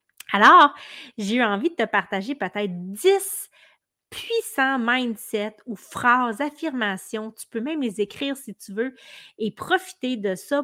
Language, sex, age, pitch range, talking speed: French, female, 30-49, 205-280 Hz, 145 wpm